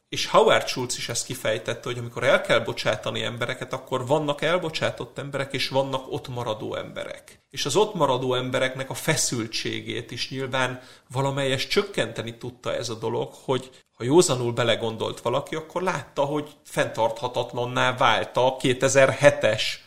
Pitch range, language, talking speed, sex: 125-145 Hz, Hungarian, 145 wpm, male